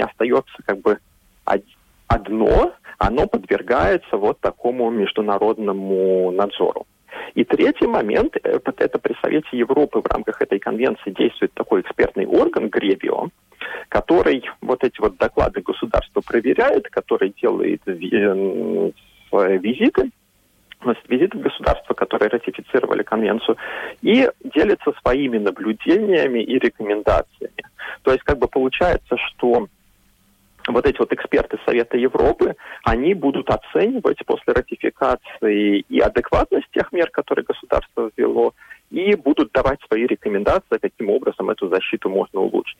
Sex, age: male, 30-49